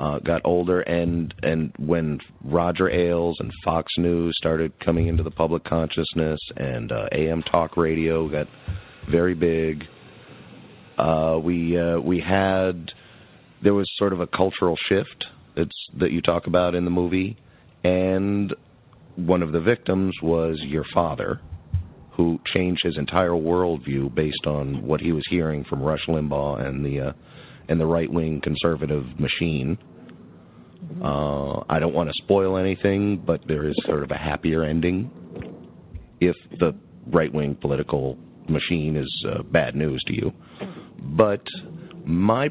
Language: English